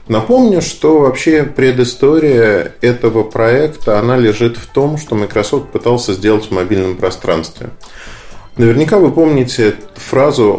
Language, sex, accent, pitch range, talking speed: Russian, male, native, 110-135 Hz, 120 wpm